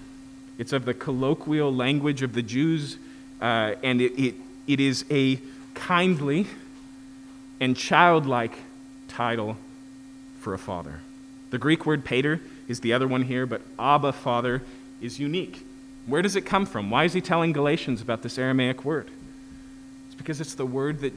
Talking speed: 160 wpm